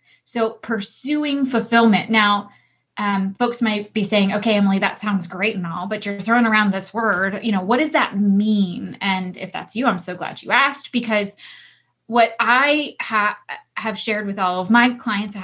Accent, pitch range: American, 205-255 Hz